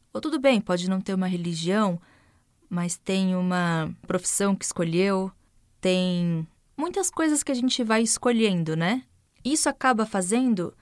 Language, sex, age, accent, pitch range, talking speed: Portuguese, female, 20-39, Brazilian, 185-240 Hz, 145 wpm